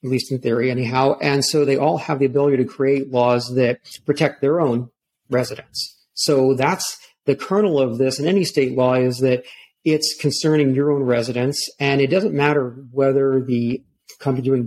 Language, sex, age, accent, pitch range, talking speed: English, male, 40-59, American, 125-150 Hz, 185 wpm